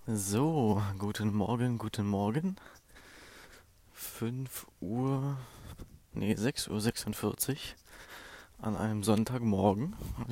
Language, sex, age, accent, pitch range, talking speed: German, male, 20-39, German, 100-115 Hz, 80 wpm